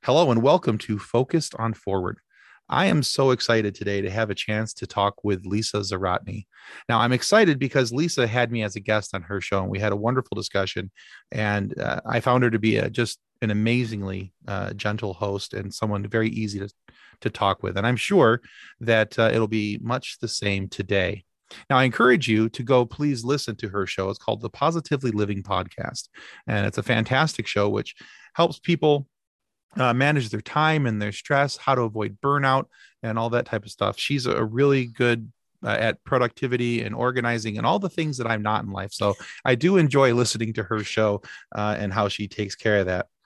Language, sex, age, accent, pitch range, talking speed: English, male, 30-49, American, 105-135 Hz, 205 wpm